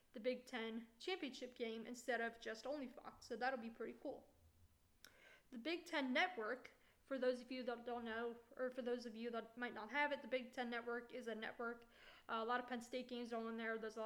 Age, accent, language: 20-39, American, English